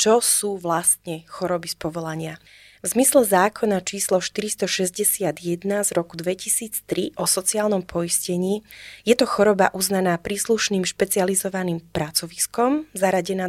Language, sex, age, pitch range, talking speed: Slovak, female, 20-39, 175-200 Hz, 110 wpm